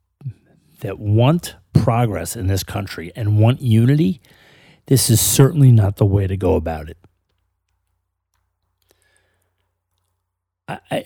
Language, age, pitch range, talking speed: English, 40-59, 90-130 Hz, 110 wpm